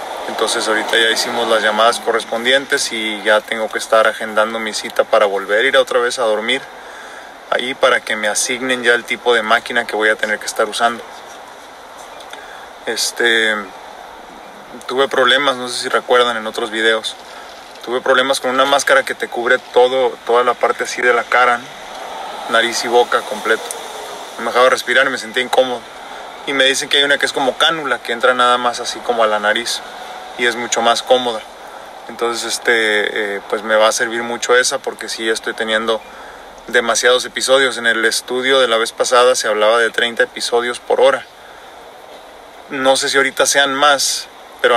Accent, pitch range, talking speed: Mexican, 115-125 Hz, 185 wpm